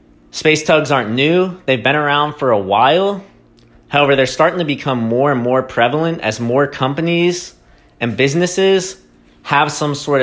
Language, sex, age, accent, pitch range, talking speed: English, male, 30-49, American, 105-140 Hz, 160 wpm